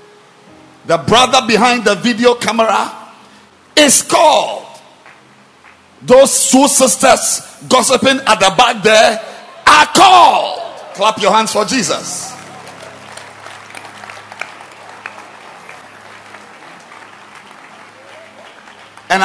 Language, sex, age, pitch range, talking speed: English, male, 50-69, 190-260 Hz, 75 wpm